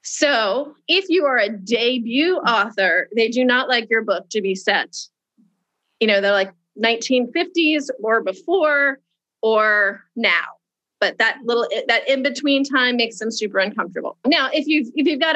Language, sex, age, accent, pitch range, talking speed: English, female, 30-49, American, 205-270 Hz, 160 wpm